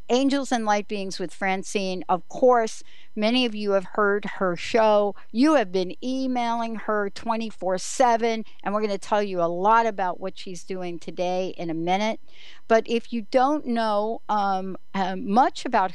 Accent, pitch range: American, 185-245 Hz